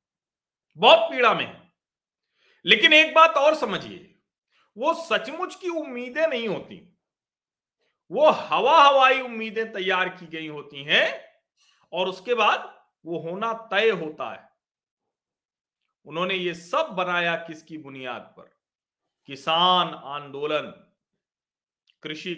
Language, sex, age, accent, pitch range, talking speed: Hindi, male, 40-59, native, 170-260 Hz, 110 wpm